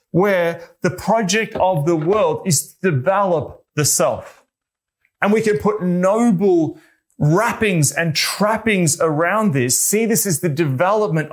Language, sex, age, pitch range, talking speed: English, male, 30-49, 145-195 Hz, 140 wpm